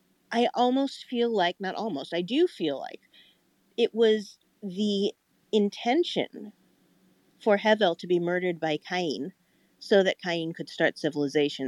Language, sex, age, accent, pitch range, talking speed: English, female, 40-59, American, 155-200 Hz, 140 wpm